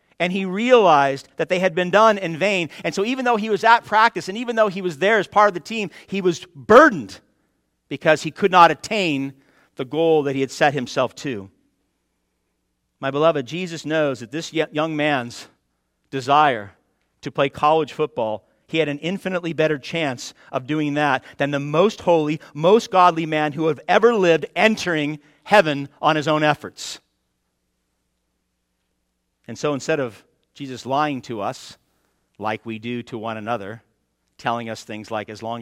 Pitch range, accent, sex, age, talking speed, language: 120-195 Hz, American, male, 50-69, 175 wpm, English